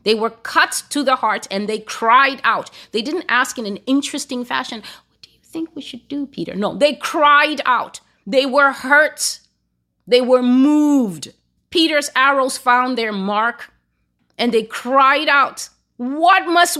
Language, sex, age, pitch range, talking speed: English, female, 30-49, 225-310 Hz, 165 wpm